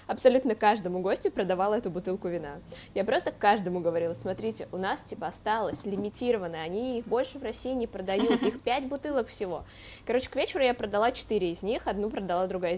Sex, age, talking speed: female, 20-39, 185 wpm